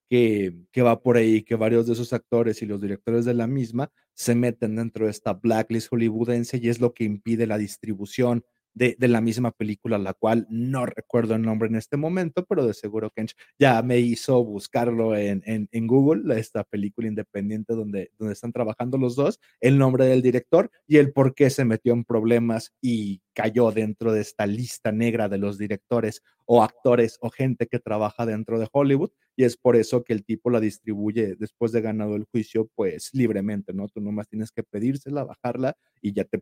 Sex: male